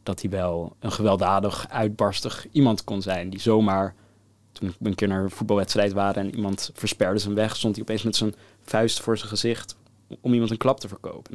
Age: 20-39